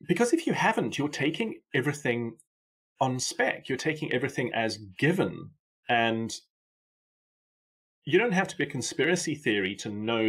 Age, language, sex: 30-49, English, male